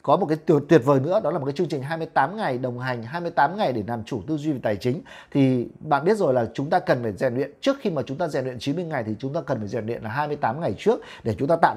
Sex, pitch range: male, 125-165 Hz